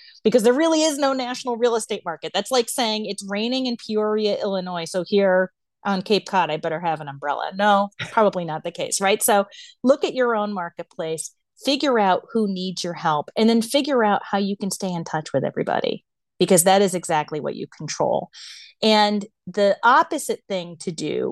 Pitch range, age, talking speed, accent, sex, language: 170-230 Hz, 30-49, 195 wpm, American, female, English